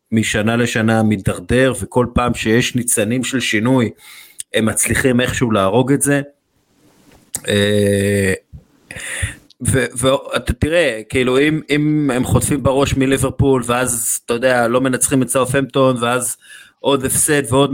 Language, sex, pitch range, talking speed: Hebrew, male, 105-135 Hz, 120 wpm